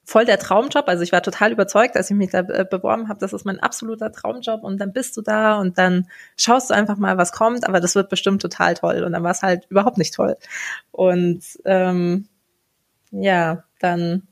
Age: 20-39